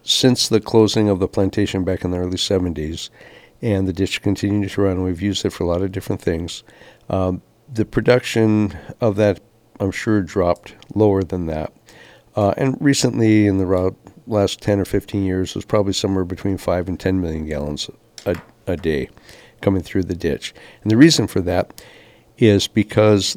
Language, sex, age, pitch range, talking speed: English, male, 60-79, 95-110 Hz, 185 wpm